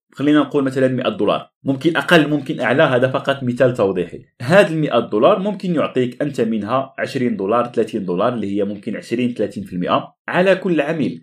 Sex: male